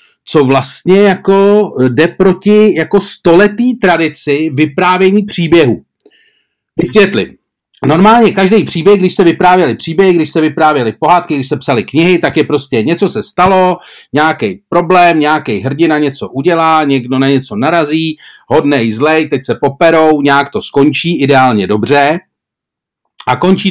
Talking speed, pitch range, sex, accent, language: 135 wpm, 150-205 Hz, male, native, Czech